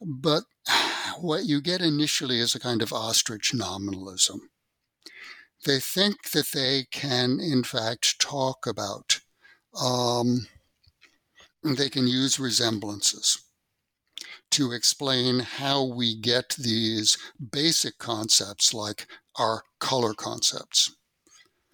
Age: 60-79